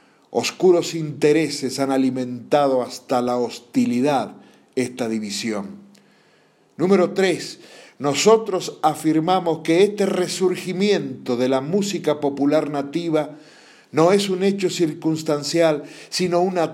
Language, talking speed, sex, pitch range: Spanish, 100 wpm, male, 125-180 Hz